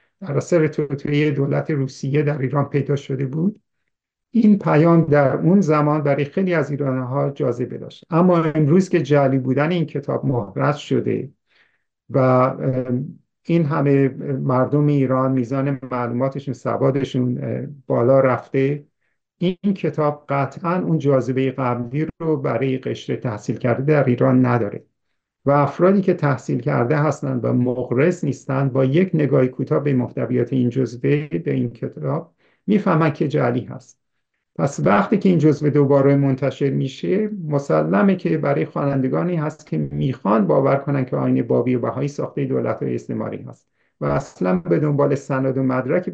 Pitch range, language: 130-155 Hz, Persian